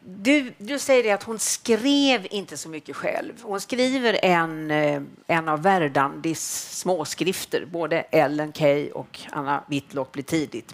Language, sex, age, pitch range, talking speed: Swedish, female, 50-69, 150-245 Hz, 145 wpm